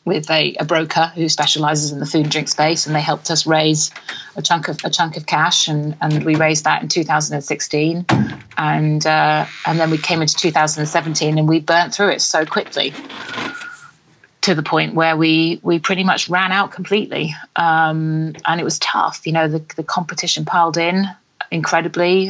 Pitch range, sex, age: 150-170 Hz, female, 30-49